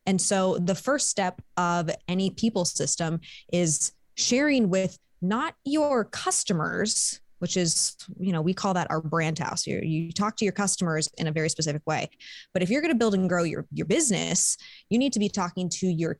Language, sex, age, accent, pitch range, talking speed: English, female, 20-39, American, 165-200 Hz, 200 wpm